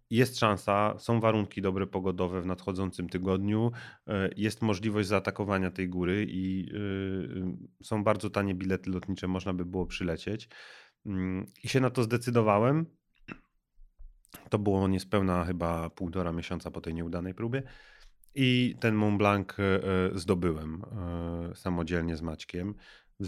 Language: Polish